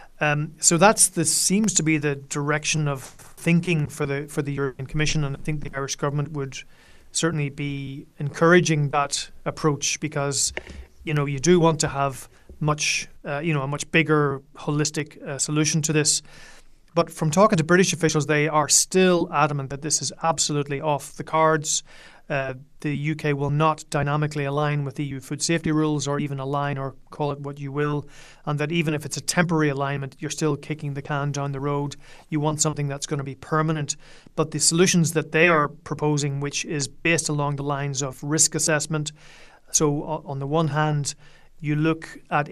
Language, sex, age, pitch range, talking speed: English, male, 30-49, 140-155 Hz, 190 wpm